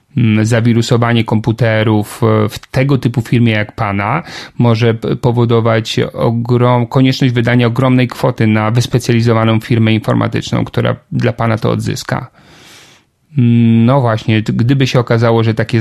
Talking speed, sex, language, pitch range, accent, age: 120 wpm, male, Polish, 110-125 Hz, native, 30-49